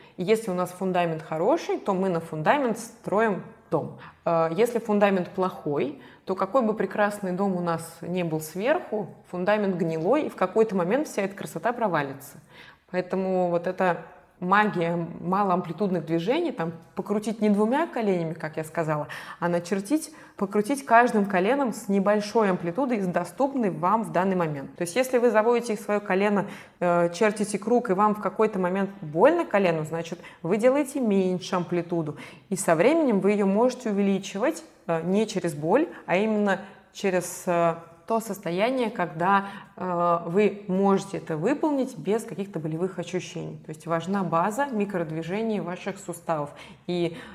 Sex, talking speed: female, 145 wpm